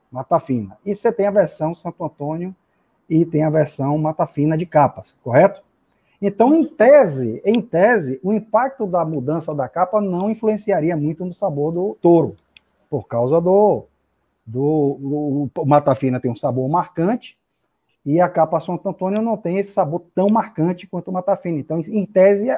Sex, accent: male, Brazilian